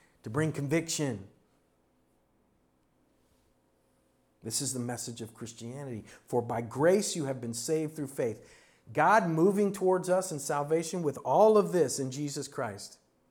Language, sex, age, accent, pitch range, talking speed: English, male, 40-59, American, 120-160 Hz, 140 wpm